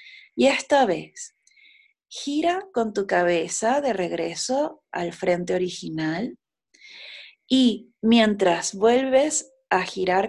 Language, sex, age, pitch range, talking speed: German, female, 30-49, 185-260 Hz, 100 wpm